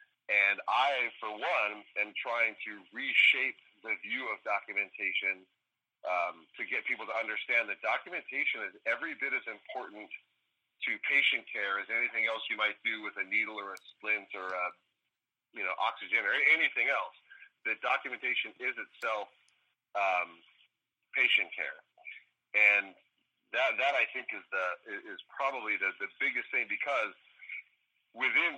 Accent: American